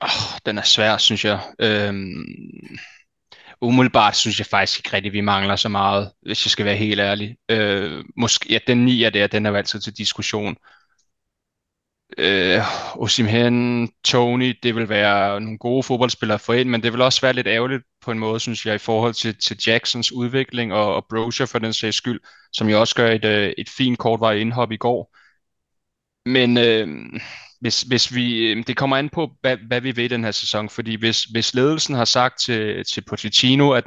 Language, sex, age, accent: Danish, male, 20-39, native